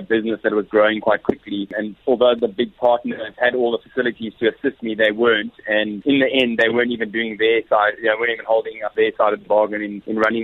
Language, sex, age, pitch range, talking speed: English, male, 30-49, 105-115 Hz, 265 wpm